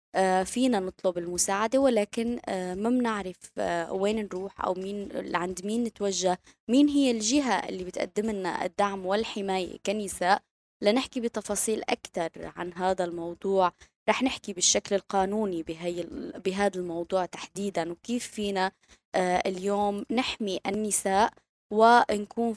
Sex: female